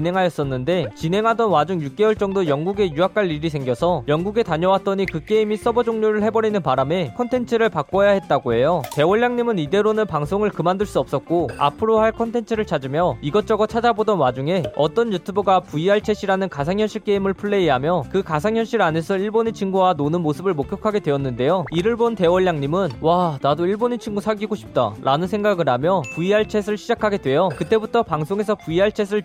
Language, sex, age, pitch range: Korean, male, 20-39, 160-215 Hz